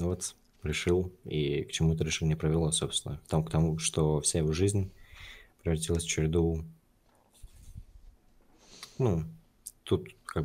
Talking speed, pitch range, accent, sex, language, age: 130 wpm, 80-90 Hz, native, male, Russian, 20-39